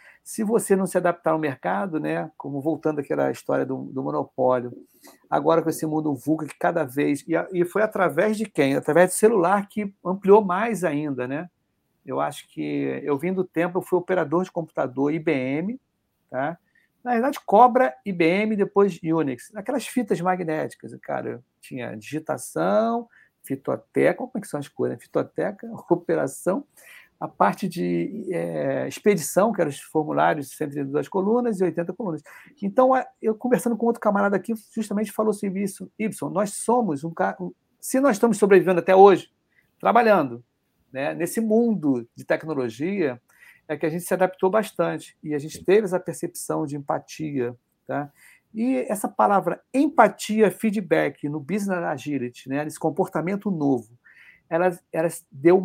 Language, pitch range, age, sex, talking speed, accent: Portuguese, 150-210 Hz, 50-69, male, 160 wpm, Brazilian